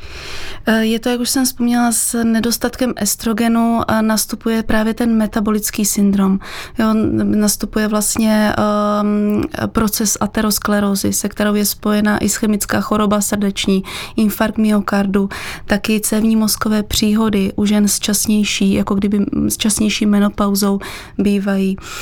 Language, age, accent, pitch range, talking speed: Czech, 20-39, native, 200-215 Hz, 120 wpm